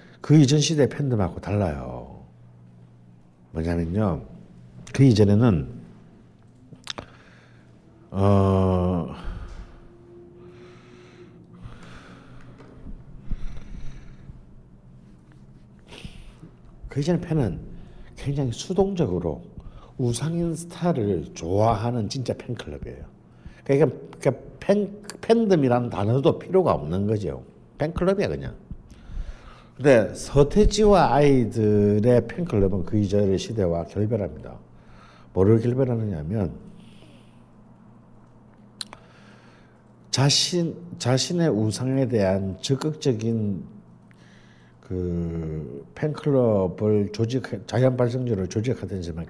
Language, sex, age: Korean, male, 60-79